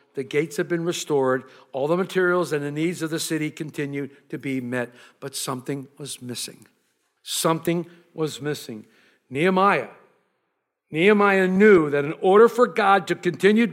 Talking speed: 155 wpm